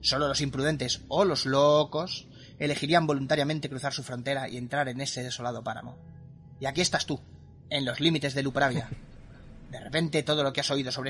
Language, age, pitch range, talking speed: Spanish, 30-49, 125-140 Hz, 190 wpm